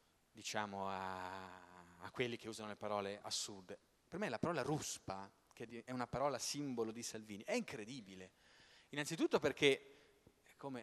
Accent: native